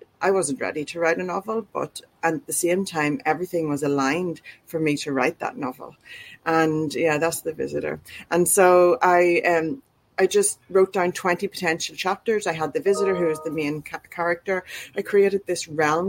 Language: English